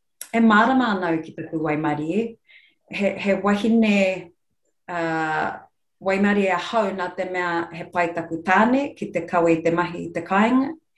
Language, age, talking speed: English, 30-49, 140 wpm